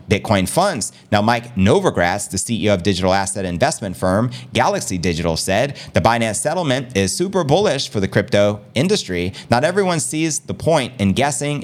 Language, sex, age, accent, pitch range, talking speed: English, male, 30-49, American, 105-150 Hz, 165 wpm